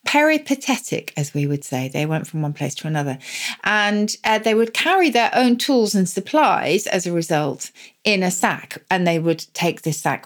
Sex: female